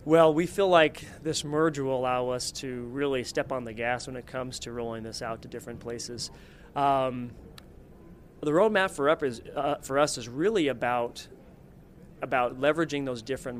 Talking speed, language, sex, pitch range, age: 180 wpm, English, male, 125-150 Hz, 30-49